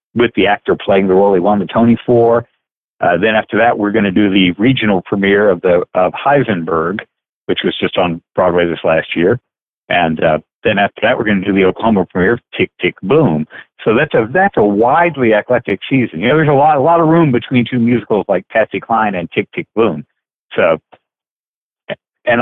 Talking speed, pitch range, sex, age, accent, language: 210 wpm, 100-125 Hz, male, 60-79, American, English